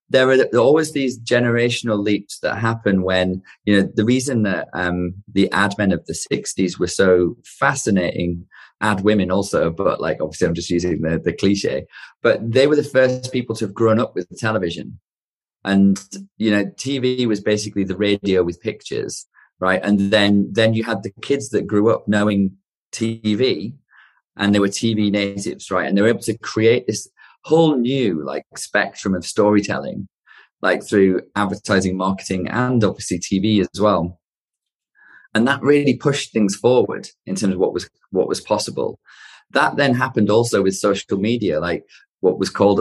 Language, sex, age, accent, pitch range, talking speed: English, male, 30-49, British, 95-115 Hz, 175 wpm